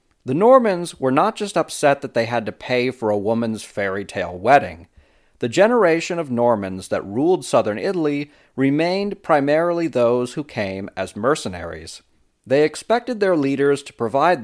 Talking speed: 160 wpm